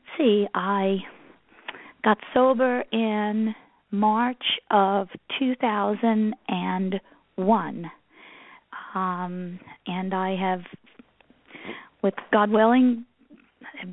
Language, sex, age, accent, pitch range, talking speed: English, female, 40-59, American, 190-235 Hz, 65 wpm